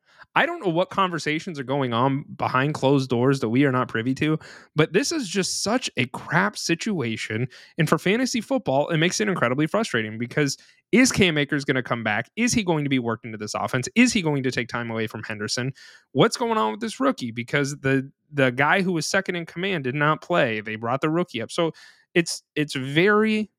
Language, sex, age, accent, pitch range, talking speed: English, male, 30-49, American, 125-175 Hz, 220 wpm